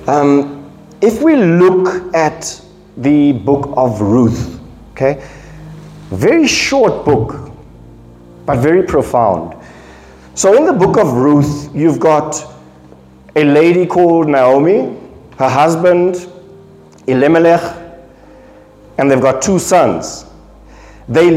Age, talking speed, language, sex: 50-69, 105 wpm, English, male